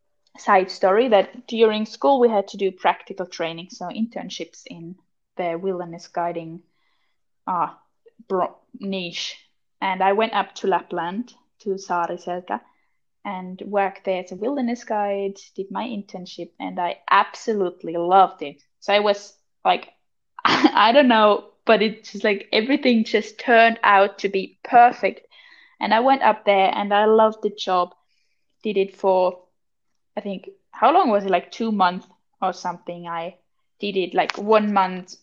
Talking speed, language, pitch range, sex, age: 155 wpm, English, 185-220 Hz, female, 10-29